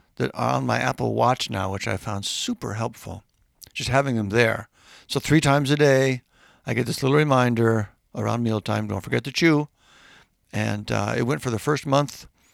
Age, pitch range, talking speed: 60-79, 110-145 Hz, 190 wpm